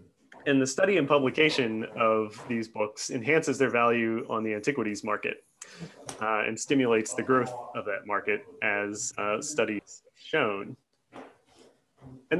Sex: male